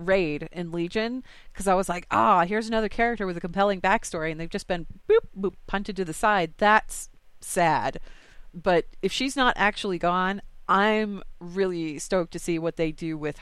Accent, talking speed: American, 190 wpm